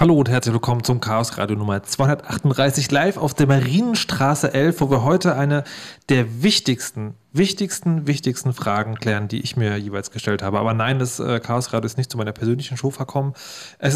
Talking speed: 185 wpm